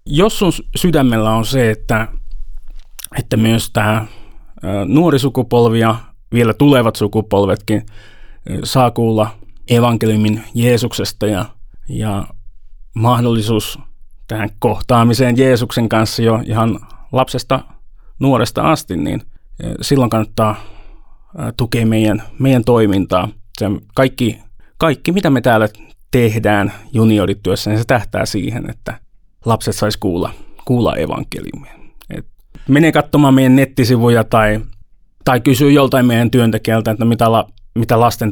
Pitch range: 105-125 Hz